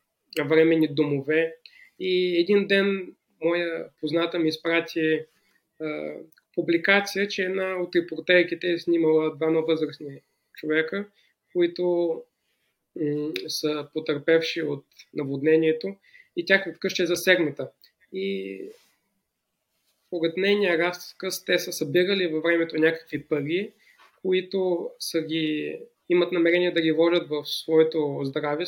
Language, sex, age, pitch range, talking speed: Bulgarian, male, 20-39, 155-185 Hz, 105 wpm